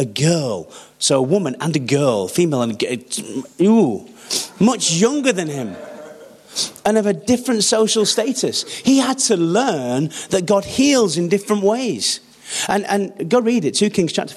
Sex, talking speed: male, 165 wpm